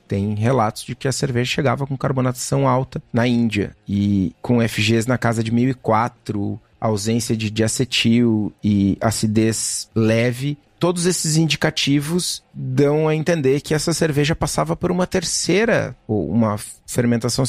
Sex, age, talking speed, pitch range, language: male, 30-49, 140 wpm, 110-135 Hz, Portuguese